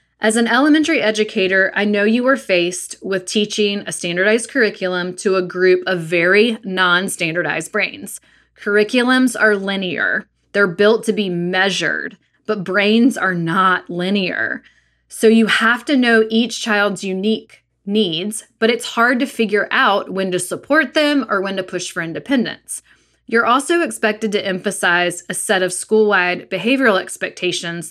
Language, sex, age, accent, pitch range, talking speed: English, female, 20-39, American, 185-230 Hz, 150 wpm